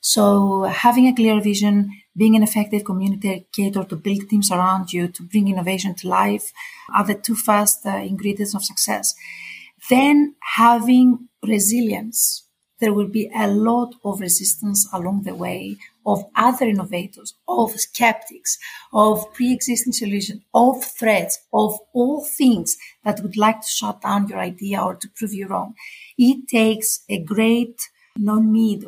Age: 40-59